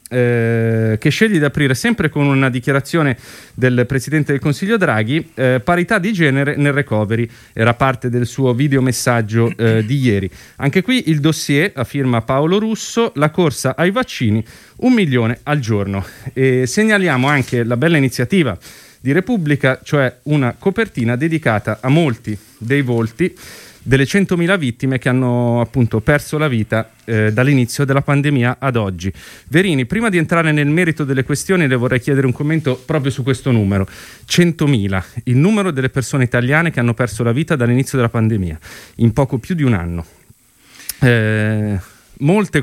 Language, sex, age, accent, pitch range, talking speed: Italian, male, 30-49, native, 115-155 Hz, 160 wpm